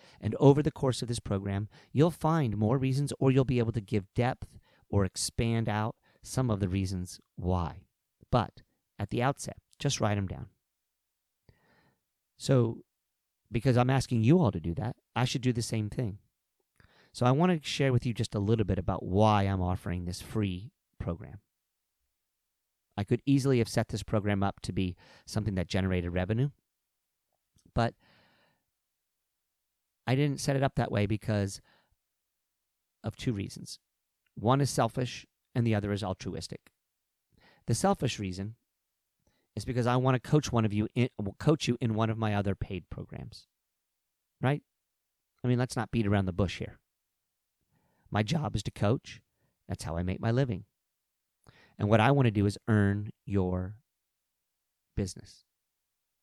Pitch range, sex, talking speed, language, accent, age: 100-125 Hz, male, 165 wpm, English, American, 40-59